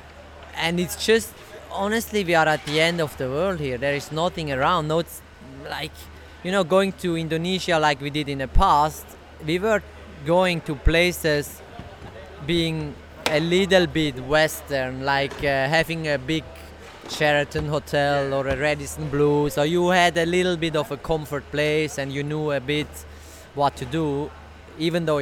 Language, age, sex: English, 20-39, male